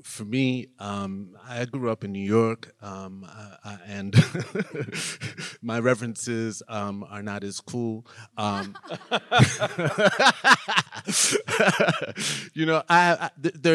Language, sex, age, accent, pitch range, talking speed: English, male, 30-49, American, 110-130 Hz, 95 wpm